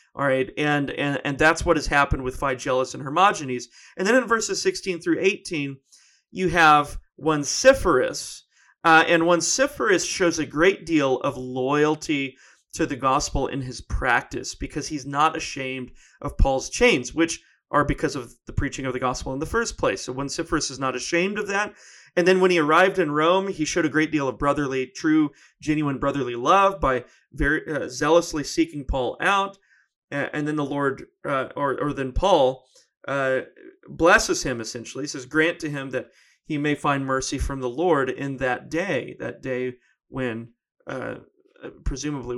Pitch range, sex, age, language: 130-165 Hz, male, 30-49, English